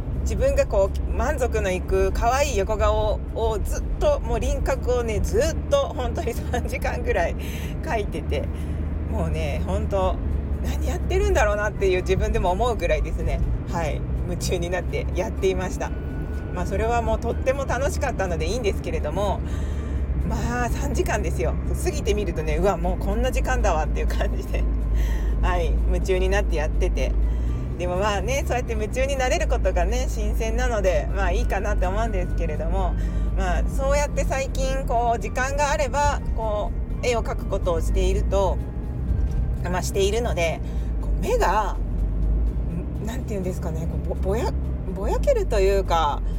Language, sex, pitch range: Japanese, female, 65-85 Hz